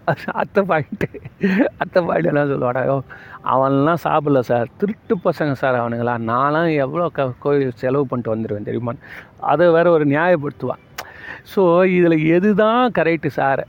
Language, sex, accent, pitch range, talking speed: Tamil, male, native, 120-150 Hz, 130 wpm